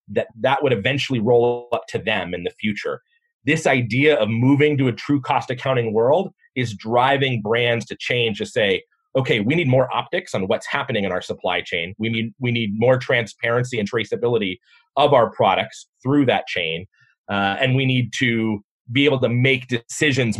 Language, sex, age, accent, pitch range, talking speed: English, male, 30-49, American, 120-150 Hz, 190 wpm